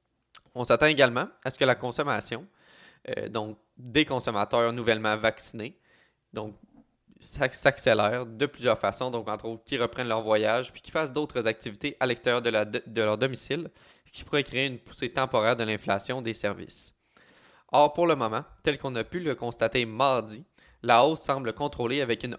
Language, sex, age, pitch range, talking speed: French, male, 20-39, 115-140 Hz, 185 wpm